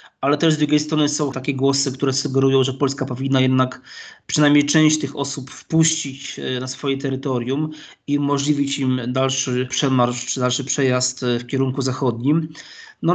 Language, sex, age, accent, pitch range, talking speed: Polish, male, 20-39, native, 135-155 Hz, 155 wpm